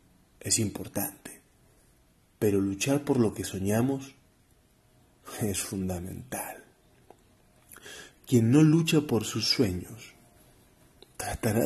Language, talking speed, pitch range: Spanish, 85 wpm, 105-140 Hz